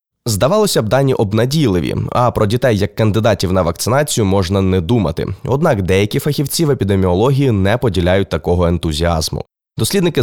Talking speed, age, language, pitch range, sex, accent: 140 wpm, 20-39, Ukrainian, 95-130 Hz, male, native